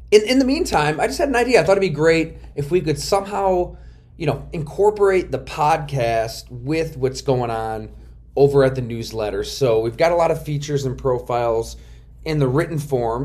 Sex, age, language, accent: male, 30-49, English, American